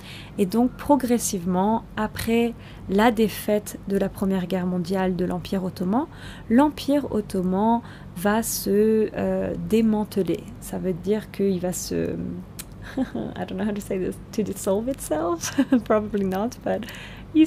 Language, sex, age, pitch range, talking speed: French, female, 20-39, 190-230 Hz, 135 wpm